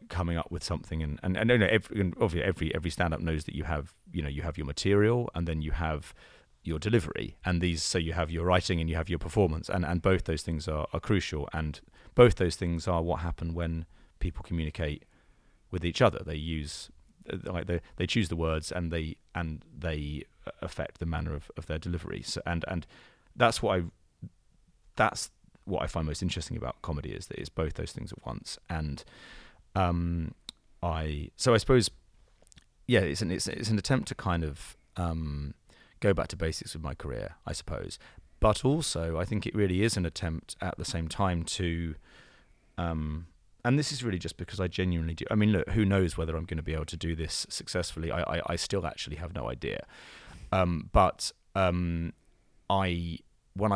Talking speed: 205 wpm